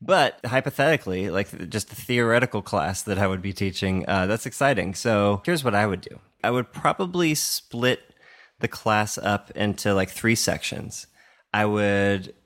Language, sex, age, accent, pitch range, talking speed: English, male, 20-39, American, 90-115 Hz, 165 wpm